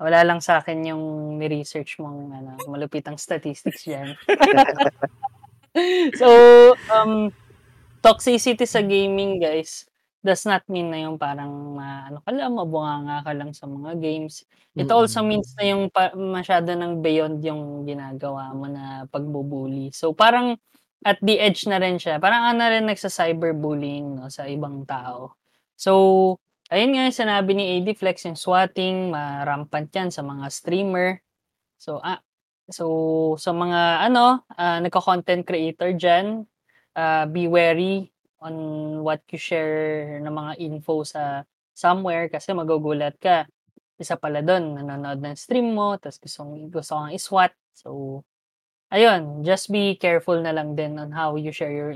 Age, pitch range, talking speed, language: 20-39, 150-190 Hz, 150 wpm, Filipino